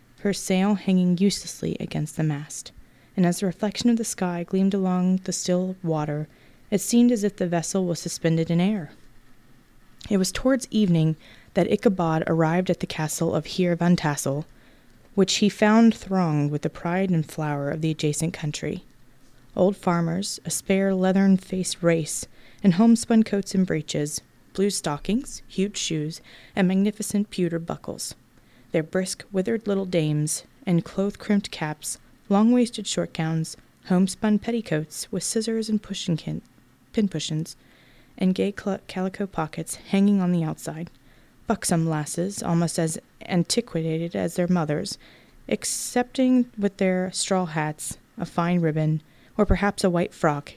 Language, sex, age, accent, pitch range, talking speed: English, female, 20-39, American, 160-200 Hz, 145 wpm